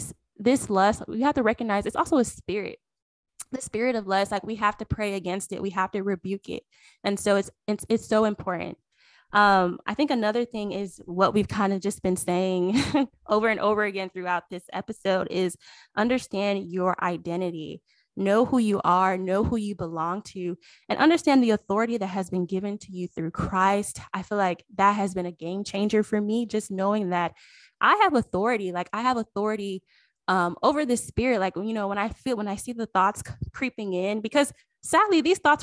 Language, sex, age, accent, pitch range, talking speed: English, female, 10-29, American, 190-230 Hz, 200 wpm